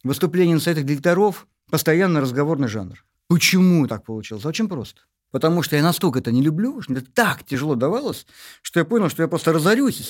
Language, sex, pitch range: Russian, male, 135-210 Hz